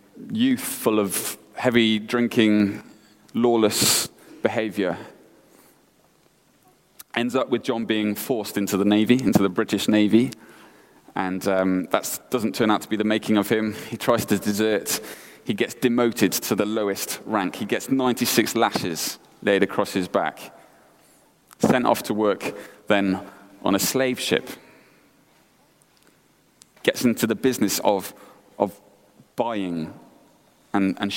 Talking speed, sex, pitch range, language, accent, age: 130 wpm, male, 100-120 Hz, English, British, 30-49